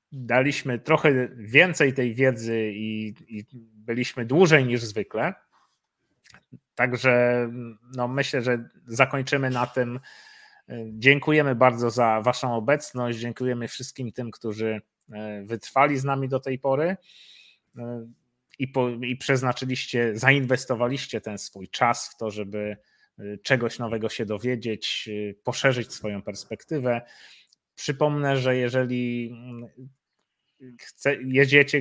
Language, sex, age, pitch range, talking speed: Polish, male, 30-49, 115-130 Hz, 100 wpm